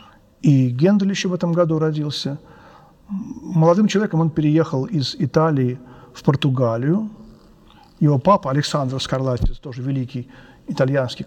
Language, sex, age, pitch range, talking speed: Russian, male, 50-69, 135-175 Hz, 110 wpm